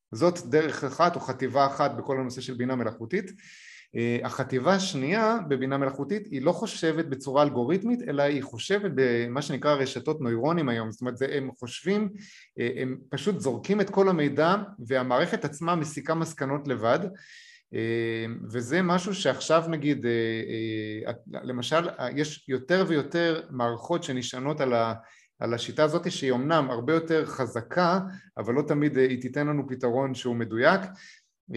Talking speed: 135 wpm